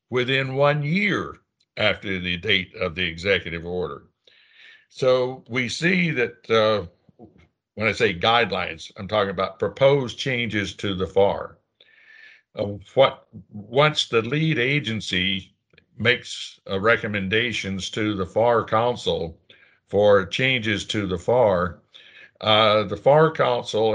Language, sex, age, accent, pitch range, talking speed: English, male, 60-79, American, 100-135 Hz, 125 wpm